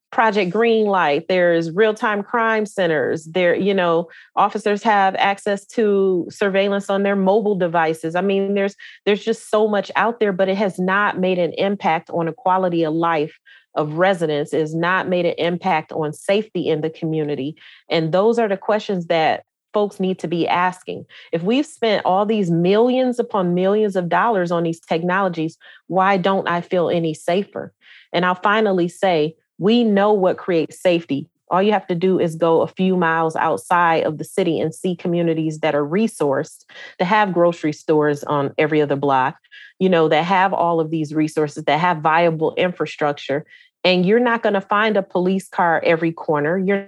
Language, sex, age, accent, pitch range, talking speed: English, female, 30-49, American, 155-195 Hz, 185 wpm